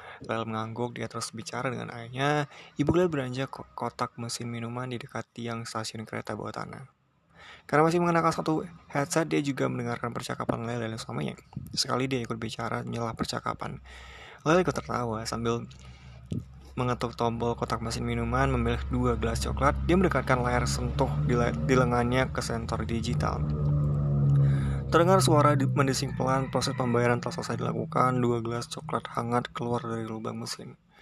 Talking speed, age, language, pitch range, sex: 155 wpm, 20-39, Indonesian, 115-135 Hz, male